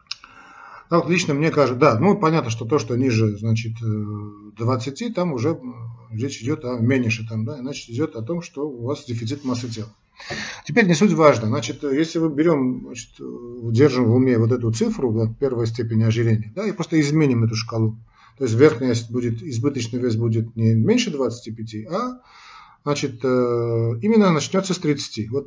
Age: 40-59